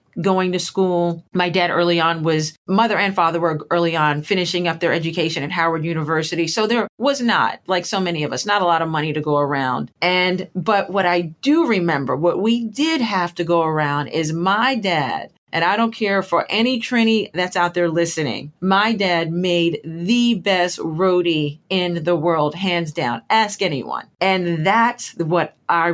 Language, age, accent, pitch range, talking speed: English, 40-59, American, 160-195 Hz, 190 wpm